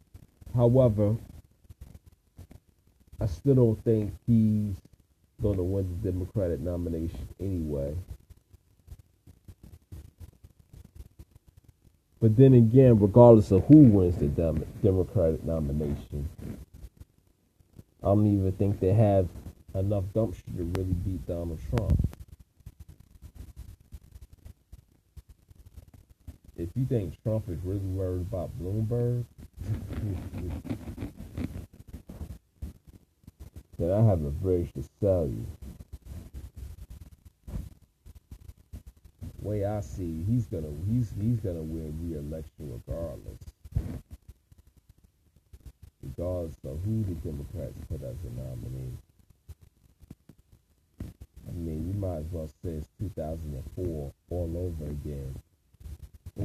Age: 40-59